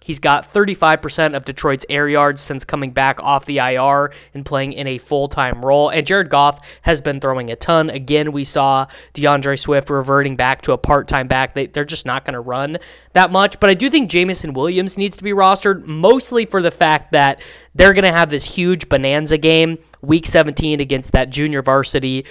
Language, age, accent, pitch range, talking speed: English, 20-39, American, 140-175 Hz, 205 wpm